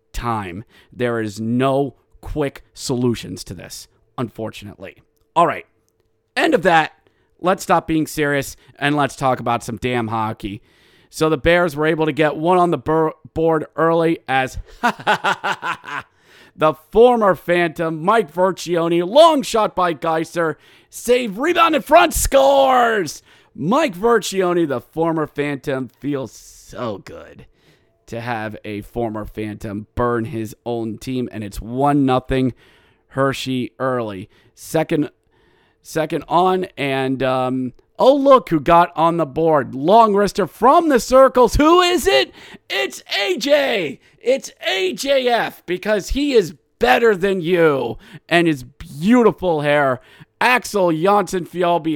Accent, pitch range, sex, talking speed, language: American, 125-190 Hz, male, 130 wpm, English